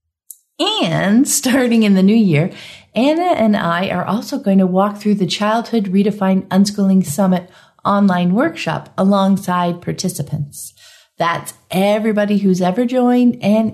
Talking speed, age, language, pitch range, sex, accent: 130 wpm, 50-69, English, 175-245 Hz, female, American